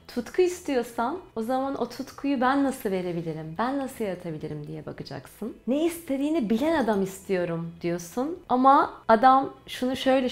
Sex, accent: female, native